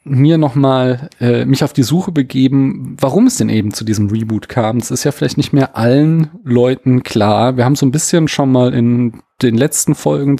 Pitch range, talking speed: 115-140 Hz, 215 wpm